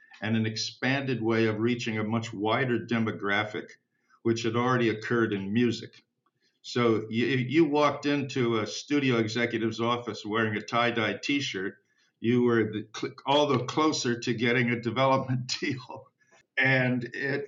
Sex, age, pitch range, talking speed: male, 50-69, 115-135 Hz, 145 wpm